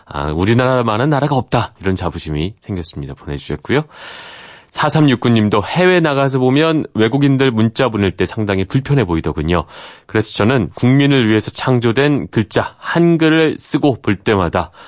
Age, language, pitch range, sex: 30-49, Korean, 90-135 Hz, male